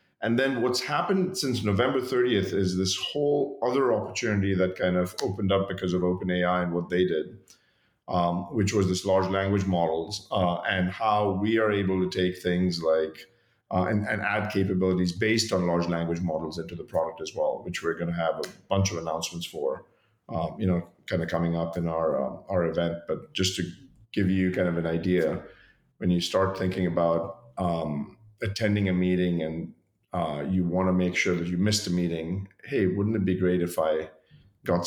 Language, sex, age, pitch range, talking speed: English, male, 40-59, 90-105 Hz, 200 wpm